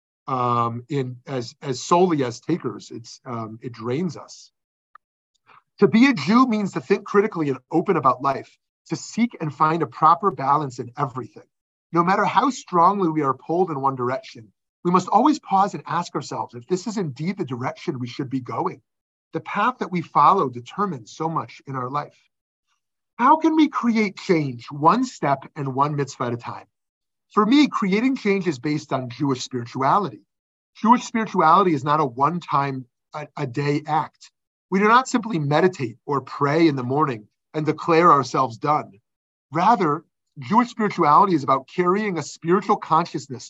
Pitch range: 135-185 Hz